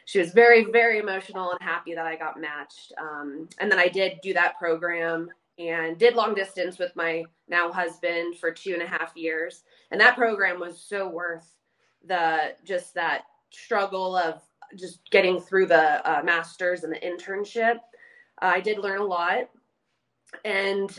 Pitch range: 175-210 Hz